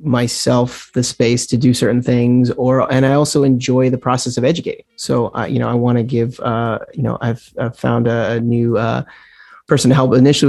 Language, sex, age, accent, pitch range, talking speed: English, male, 30-49, American, 115-125 Hz, 210 wpm